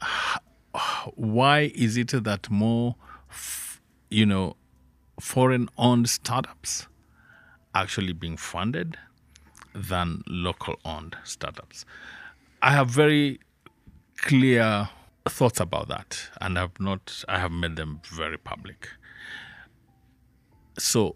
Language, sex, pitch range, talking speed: English, male, 90-120 Hz, 100 wpm